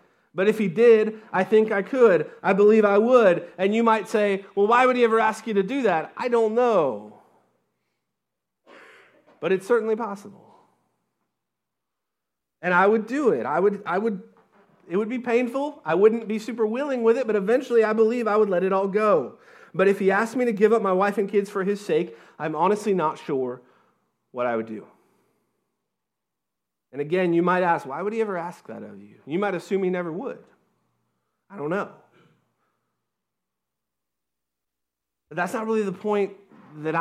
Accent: American